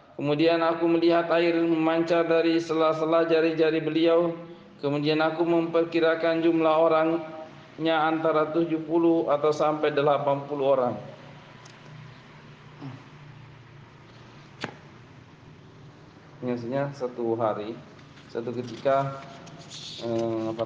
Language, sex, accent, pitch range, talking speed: Indonesian, male, native, 115-145 Hz, 75 wpm